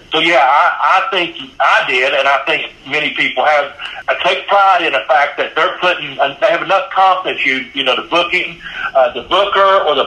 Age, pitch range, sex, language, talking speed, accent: 60-79, 150-190 Hz, male, English, 215 wpm, American